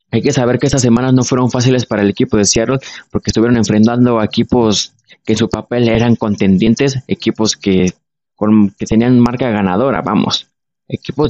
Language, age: Spanish, 20-39